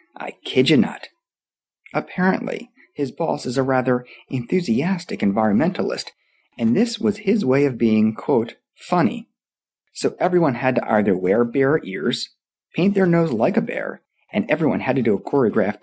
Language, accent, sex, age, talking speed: English, American, male, 30-49, 160 wpm